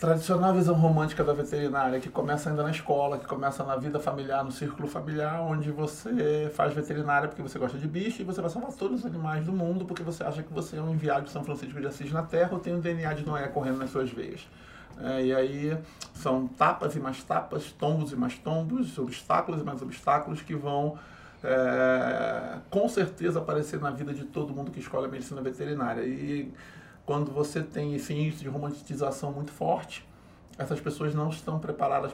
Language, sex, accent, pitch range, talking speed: Portuguese, male, Brazilian, 130-155 Hz, 200 wpm